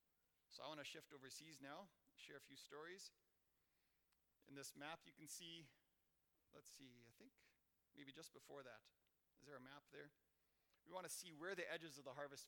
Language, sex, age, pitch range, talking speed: English, male, 40-59, 130-160 Hz, 185 wpm